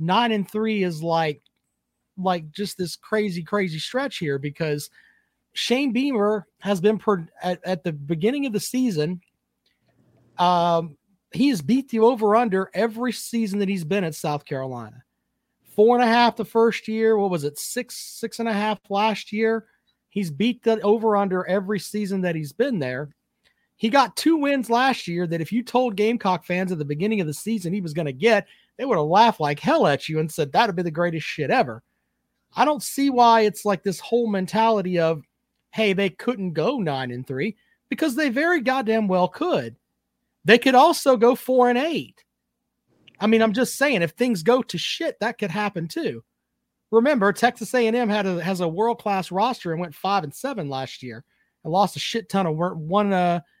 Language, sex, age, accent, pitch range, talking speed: English, male, 40-59, American, 170-230 Hz, 190 wpm